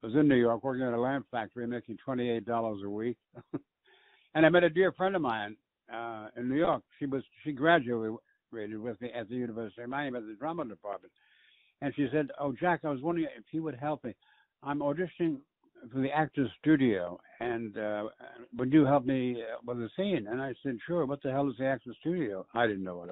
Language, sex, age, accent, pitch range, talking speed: English, male, 60-79, American, 115-145 Hz, 220 wpm